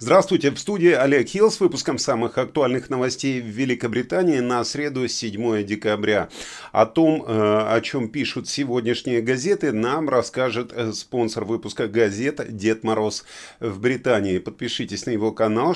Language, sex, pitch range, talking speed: Russian, male, 110-145 Hz, 135 wpm